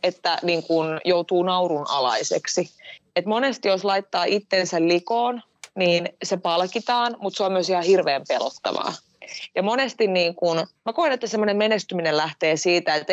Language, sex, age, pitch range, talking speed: Finnish, female, 20-39, 160-205 Hz, 155 wpm